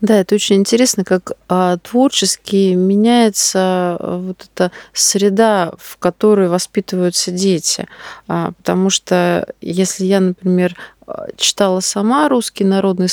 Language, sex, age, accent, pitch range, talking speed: Russian, female, 30-49, native, 185-215 Hz, 105 wpm